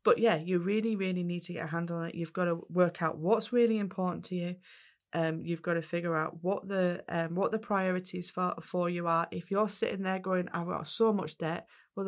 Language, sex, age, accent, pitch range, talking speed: English, female, 20-39, British, 155-180 Hz, 245 wpm